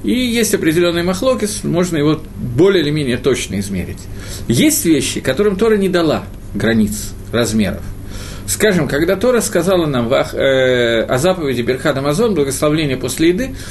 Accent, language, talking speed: native, Russian, 145 wpm